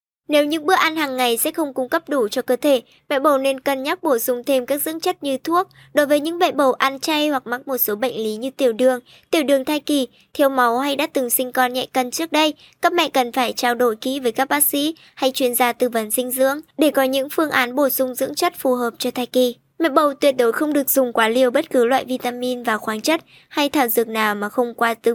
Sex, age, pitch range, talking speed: male, 10-29, 245-300 Hz, 270 wpm